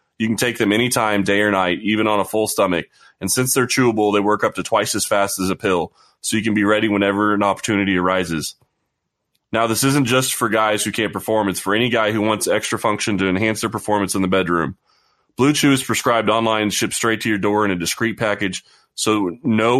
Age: 30-49